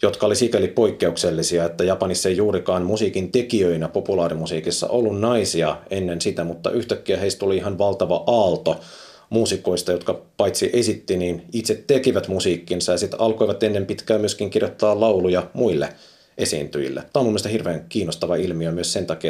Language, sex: Finnish, male